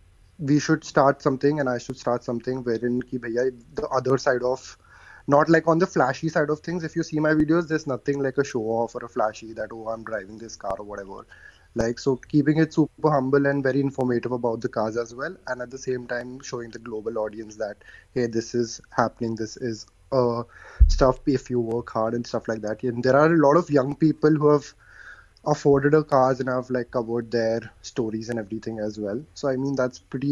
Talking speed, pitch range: 230 wpm, 115-135 Hz